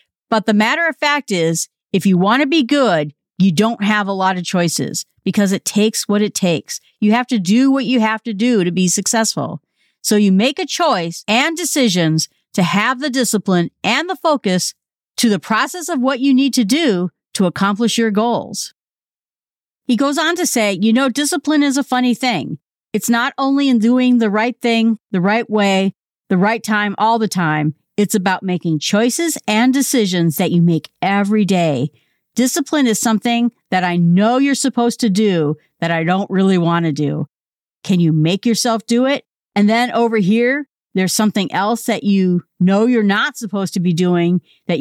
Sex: female